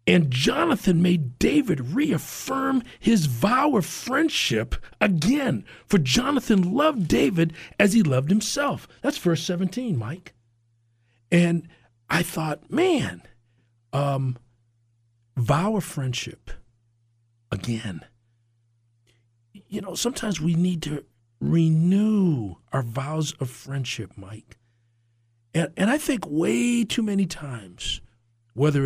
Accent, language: American, English